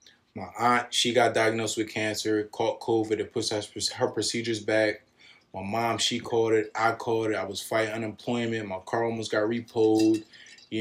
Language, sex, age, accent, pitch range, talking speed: English, male, 20-39, American, 105-120 Hz, 180 wpm